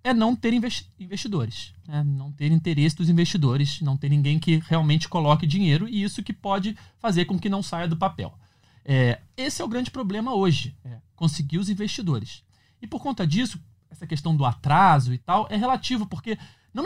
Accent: Brazilian